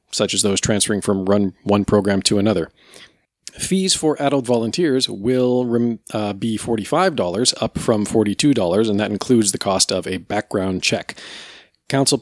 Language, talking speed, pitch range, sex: English, 155 wpm, 105-135 Hz, male